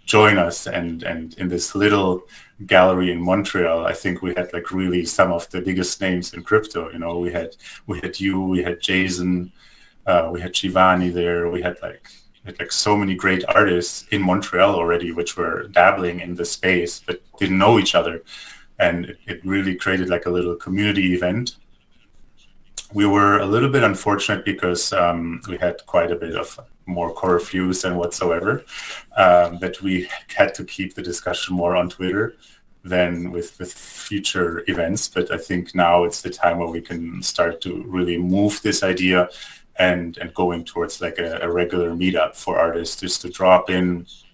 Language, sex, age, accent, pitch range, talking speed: English, male, 30-49, German, 85-95 Hz, 185 wpm